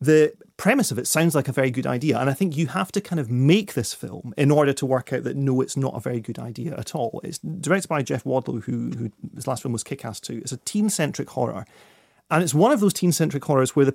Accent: British